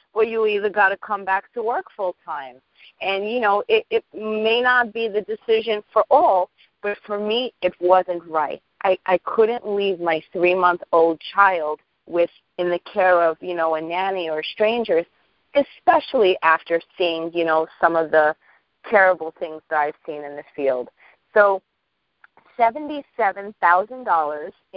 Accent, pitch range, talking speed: American, 165-215 Hz, 155 wpm